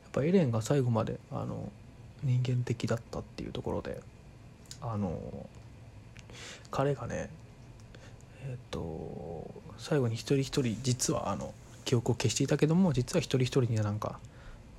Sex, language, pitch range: male, Japanese, 110-130 Hz